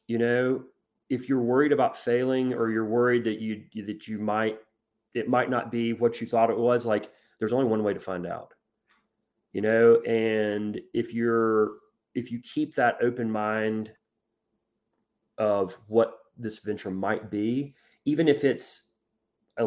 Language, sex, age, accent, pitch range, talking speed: English, male, 30-49, American, 105-120 Hz, 160 wpm